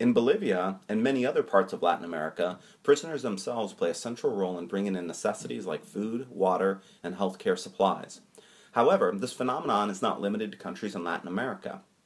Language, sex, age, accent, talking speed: English, male, 30-49, American, 180 wpm